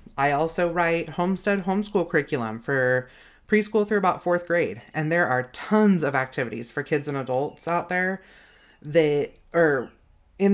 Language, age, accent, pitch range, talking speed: English, 30-49, American, 150-195 Hz, 155 wpm